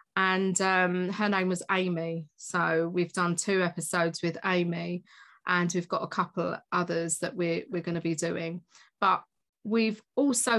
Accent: British